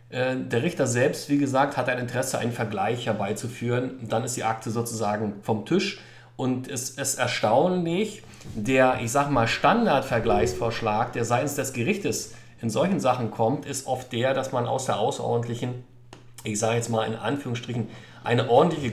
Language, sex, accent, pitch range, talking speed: German, male, German, 115-140 Hz, 160 wpm